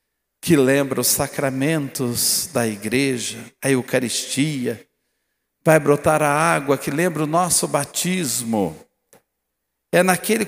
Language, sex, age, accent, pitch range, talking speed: Portuguese, male, 60-79, Brazilian, 135-185 Hz, 110 wpm